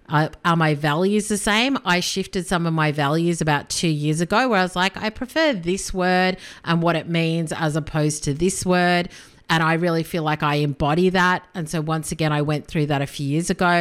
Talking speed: 230 wpm